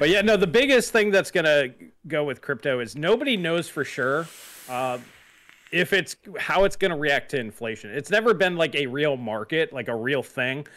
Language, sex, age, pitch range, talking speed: English, male, 30-49, 125-165 Hz, 210 wpm